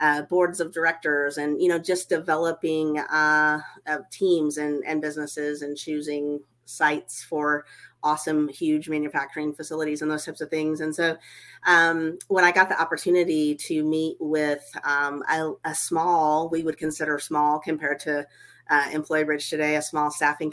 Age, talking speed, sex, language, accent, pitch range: 40-59, 160 wpm, female, English, American, 150-160 Hz